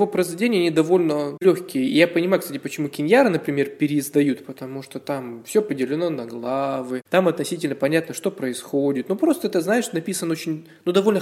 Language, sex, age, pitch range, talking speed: Russian, male, 20-39, 140-180 Hz, 170 wpm